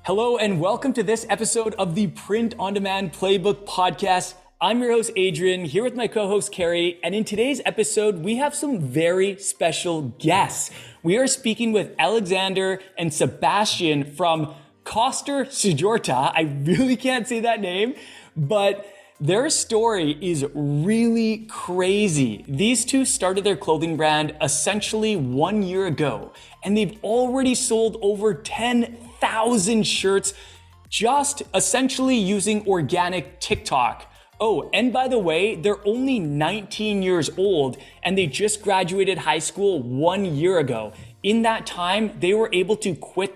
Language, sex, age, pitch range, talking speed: English, male, 20-39, 175-220 Hz, 145 wpm